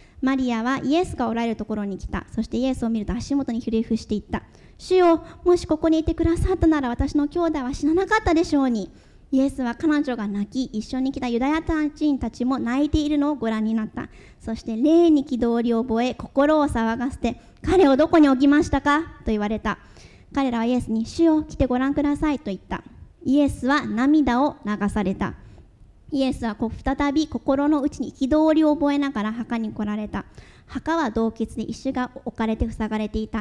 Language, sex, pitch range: English, male, 225-295 Hz